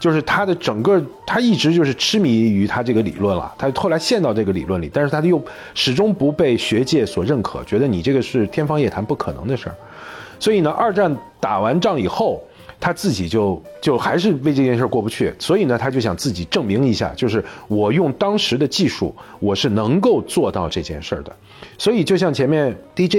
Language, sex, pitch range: Chinese, male, 110-180 Hz